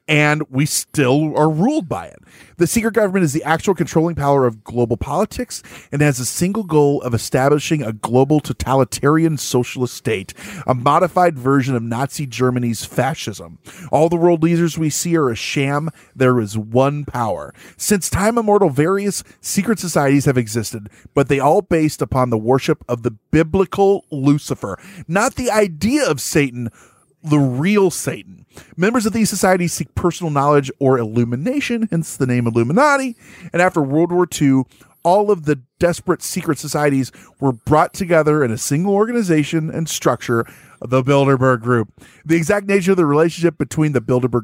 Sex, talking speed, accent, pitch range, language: male, 165 wpm, American, 125-175 Hz, English